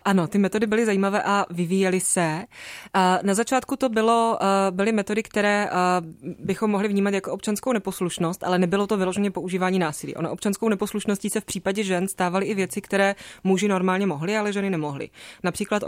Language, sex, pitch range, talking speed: Czech, female, 175-195 Hz, 170 wpm